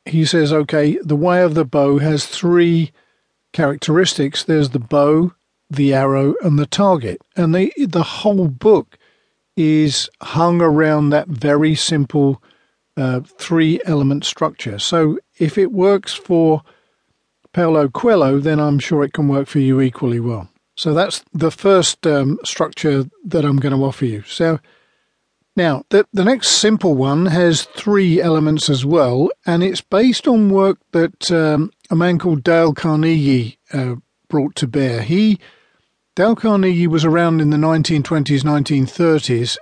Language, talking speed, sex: English, 150 wpm, male